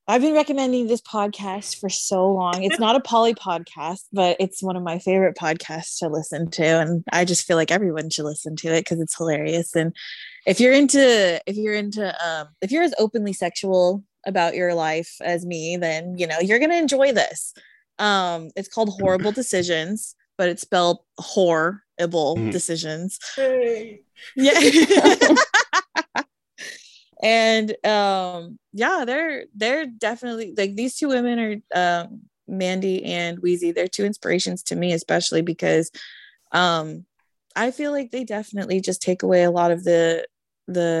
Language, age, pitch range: English, 20-39, 170-220 Hz